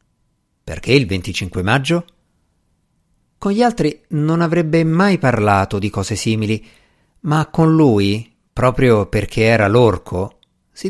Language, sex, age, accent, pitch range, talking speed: Italian, male, 50-69, native, 105-155 Hz, 120 wpm